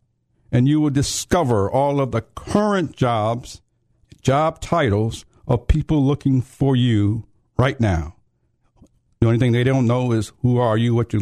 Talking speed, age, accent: 160 wpm, 60-79, American